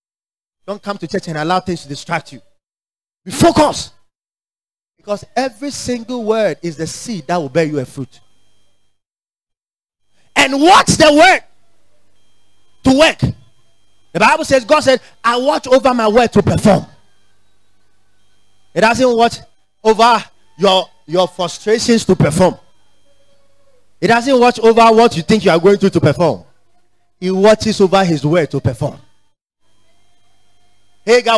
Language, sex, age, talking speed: English, male, 30-49, 140 wpm